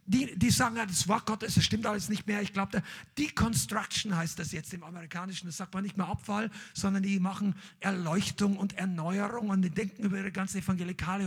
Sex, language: male, German